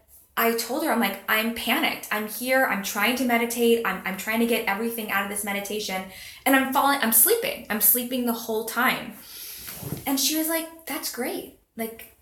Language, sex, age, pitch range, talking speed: English, female, 20-39, 205-255 Hz, 195 wpm